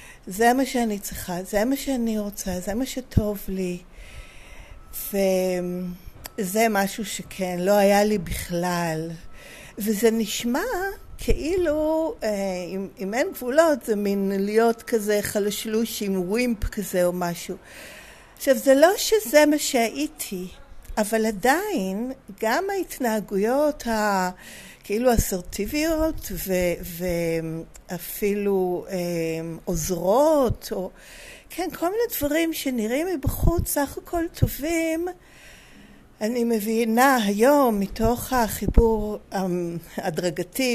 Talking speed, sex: 100 wpm, female